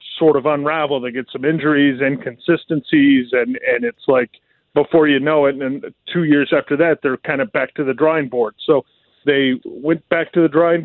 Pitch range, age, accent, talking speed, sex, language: 140-170 Hz, 40-59, American, 205 wpm, male, English